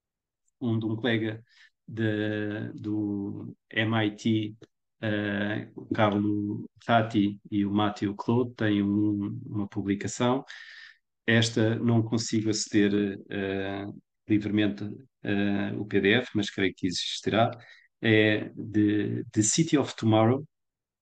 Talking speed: 110 wpm